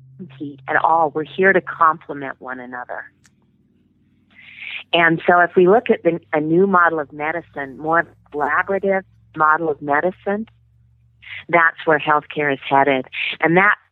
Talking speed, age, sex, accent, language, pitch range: 140 wpm, 40-59, female, American, English, 140-175 Hz